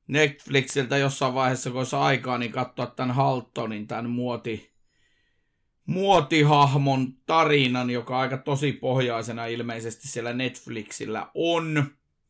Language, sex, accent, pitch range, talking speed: Finnish, male, native, 125-145 Hz, 105 wpm